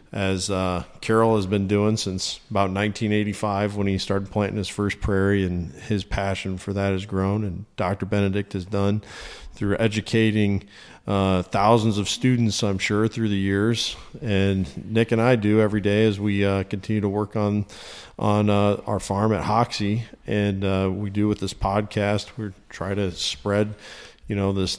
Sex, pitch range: male, 95-105 Hz